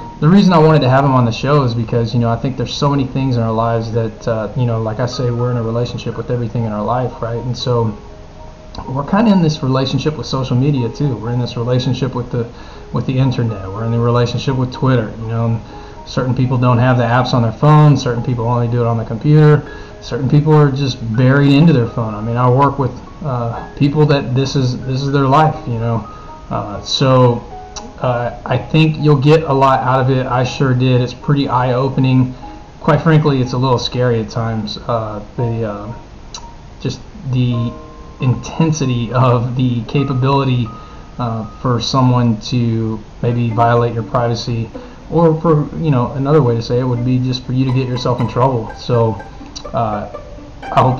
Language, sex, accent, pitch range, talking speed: English, male, American, 115-135 Hz, 205 wpm